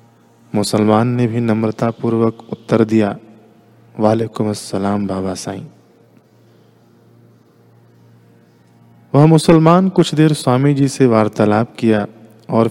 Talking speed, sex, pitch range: 100 wpm, male, 110-120 Hz